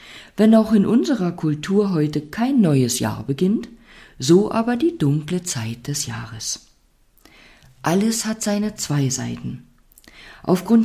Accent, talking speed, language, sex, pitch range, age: German, 125 wpm, German, female, 125-195 Hz, 50-69